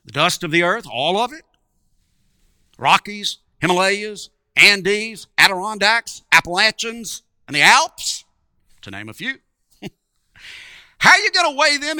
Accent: American